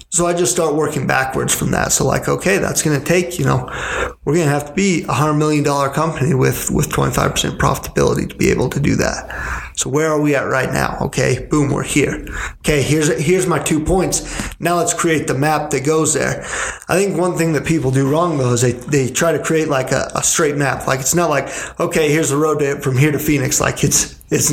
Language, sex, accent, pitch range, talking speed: English, male, American, 135-160 Hz, 245 wpm